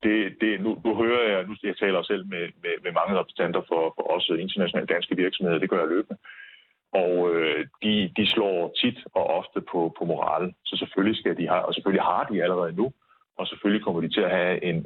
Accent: native